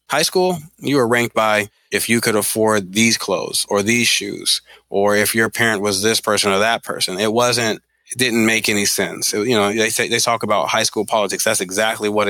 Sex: male